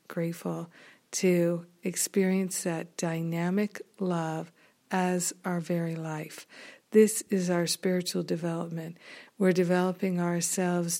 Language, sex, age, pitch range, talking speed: English, female, 50-69, 175-195 Hz, 100 wpm